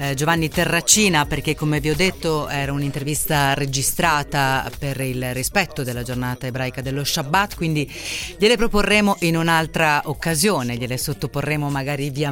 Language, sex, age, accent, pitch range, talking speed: Italian, female, 30-49, native, 135-165 Hz, 135 wpm